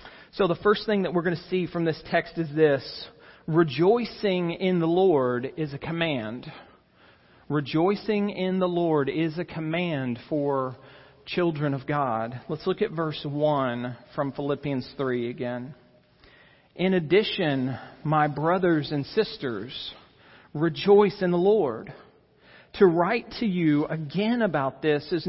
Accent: American